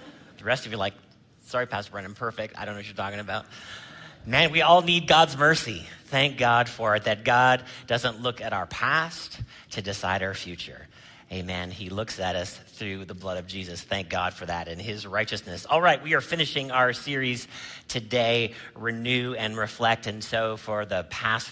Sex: male